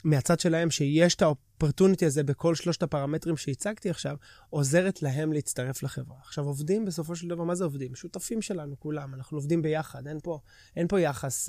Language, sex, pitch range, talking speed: Hebrew, male, 135-165 Hz, 180 wpm